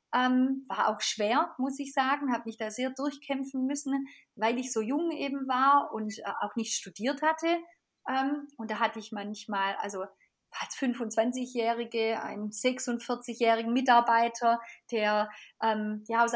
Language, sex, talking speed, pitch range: German, female, 130 wpm, 220-270 Hz